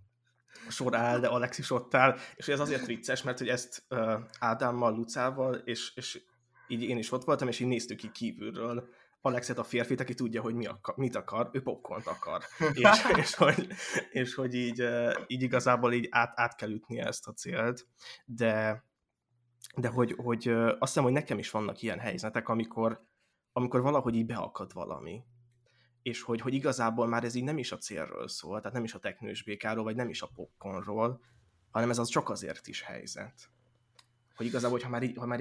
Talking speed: 185 wpm